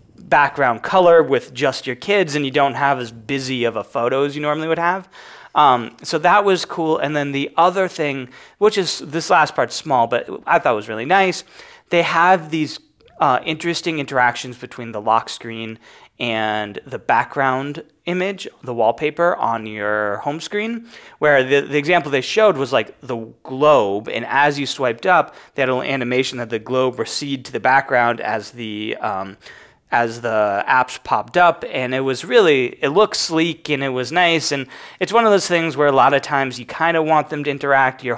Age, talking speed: 30-49, 200 wpm